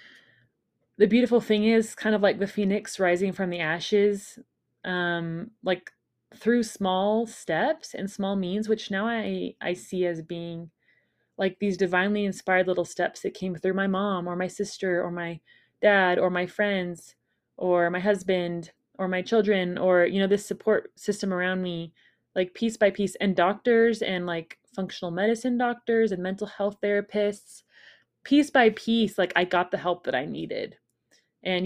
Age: 20-39